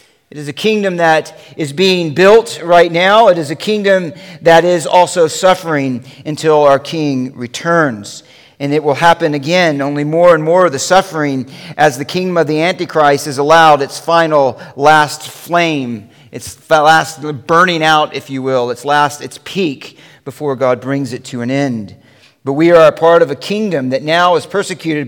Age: 50-69